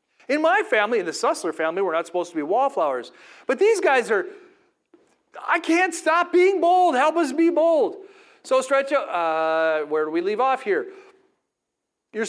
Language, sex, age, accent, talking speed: English, male, 40-59, American, 180 wpm